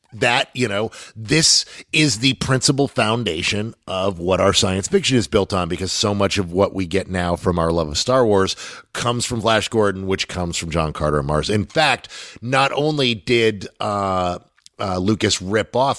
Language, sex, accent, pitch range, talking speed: English, male, American, 95-130 Hz, 190 wpm